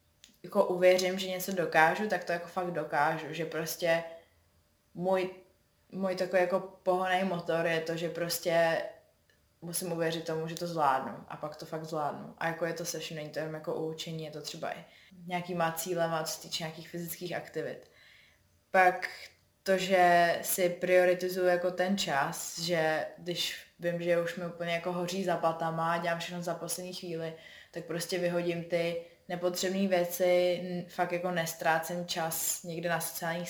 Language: Czech